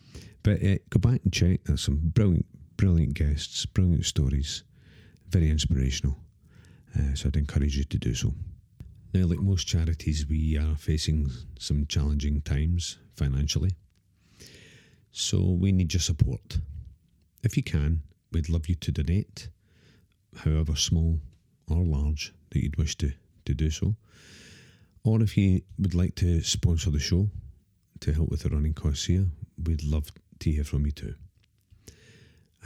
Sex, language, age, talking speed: male, English, 50-69, 150 wpm